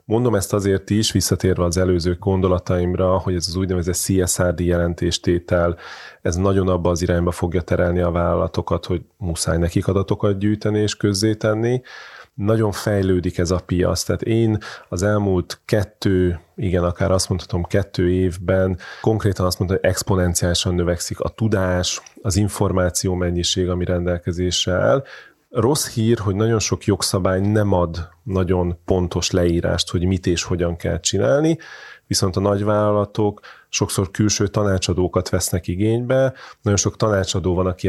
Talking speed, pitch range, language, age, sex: 145 wpm, 90-105 Hz, Hungarian, 30-49, male